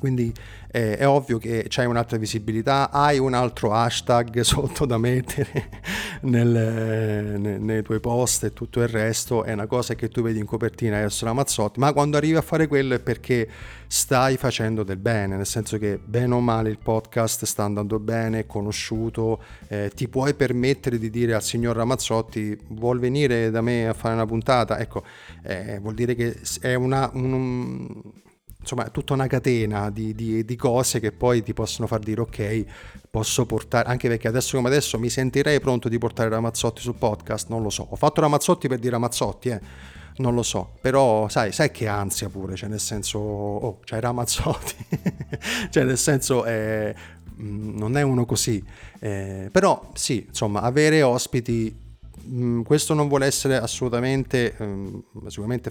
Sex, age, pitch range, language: male, 30-49, 110-125 Hz, Italian